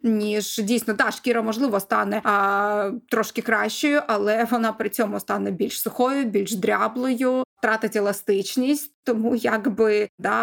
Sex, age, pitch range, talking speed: female, 20-39, 210-260 Hz, 140 wpm